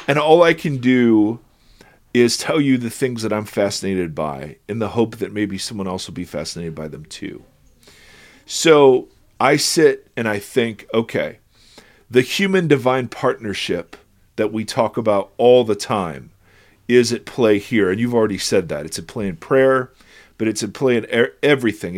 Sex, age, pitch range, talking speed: male, 40-59, 105-135 Hz, 180 wpm